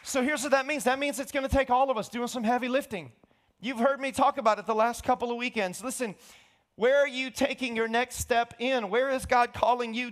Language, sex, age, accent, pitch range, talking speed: English, male, 30-49, American, 200-275 Hz, 255 wpm